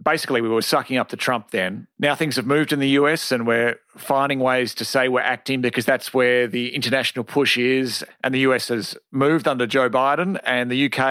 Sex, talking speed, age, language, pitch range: male, 220 wpm, 40-59, English, 120-145 Hz